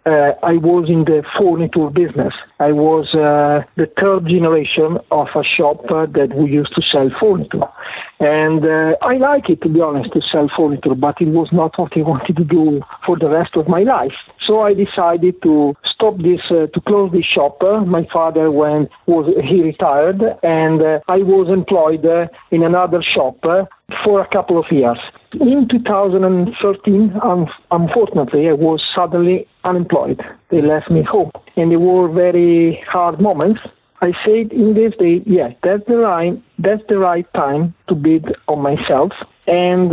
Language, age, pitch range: English, 60-79, 155-190 Hz